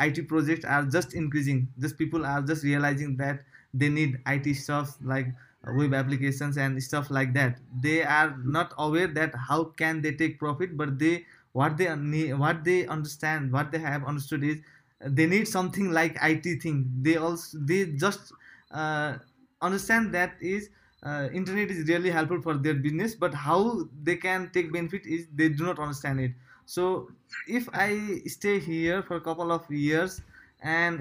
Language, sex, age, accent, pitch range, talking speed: English, male, 20-39, Indian, 145-170 Hz, 175 wpm